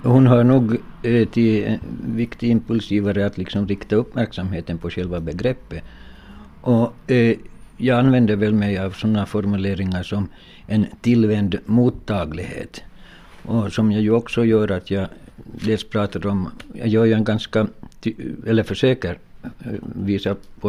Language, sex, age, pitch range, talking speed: Finnish, male, 60-79, 95-115 Hz, 135 wpm